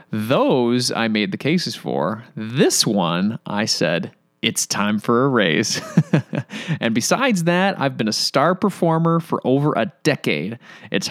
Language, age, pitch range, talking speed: English, 30-49, 130-200 Hz, 150 wpm